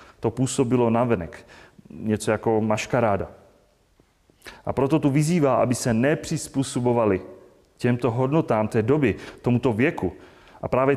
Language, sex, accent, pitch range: Czech, male, native, 115-135 Hz